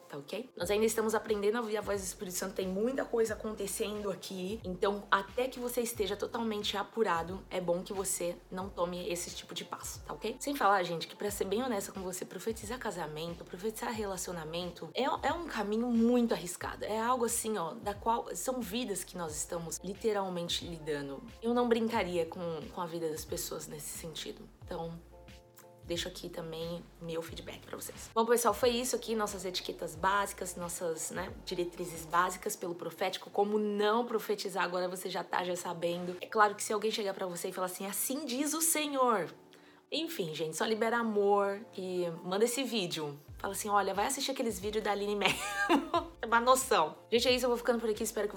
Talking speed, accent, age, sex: 195 wpm, Brazilian, 20-39, female